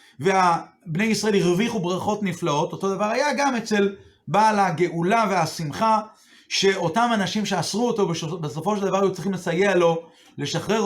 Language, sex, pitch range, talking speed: Hebrew, male, 180-230 Hz, 140 wpm